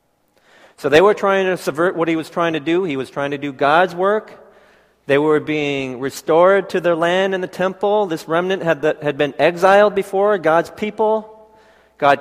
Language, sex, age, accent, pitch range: Korean, male, 40-59, American, 150-195 Hz